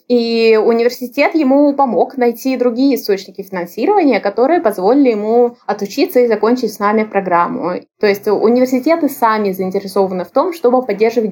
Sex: female